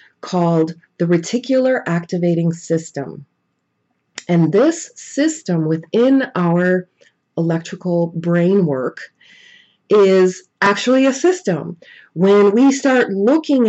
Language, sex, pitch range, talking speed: English, female, 165-210 Hz, 90 wpm